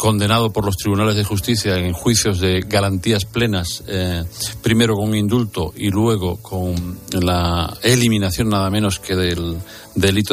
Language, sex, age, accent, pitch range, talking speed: Spanish, male, 40-59, Spanish, 90-105 Hz, 145 wpm